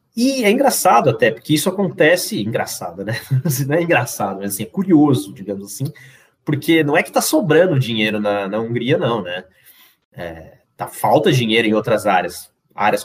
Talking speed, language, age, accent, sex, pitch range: 160 wpm, Portuguese, 30-49, Brazilian, male, 110-150 Hz